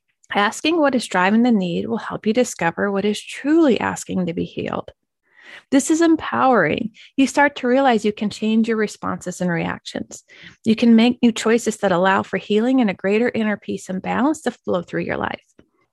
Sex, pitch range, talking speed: female, 200-255 Hz, 195 wpm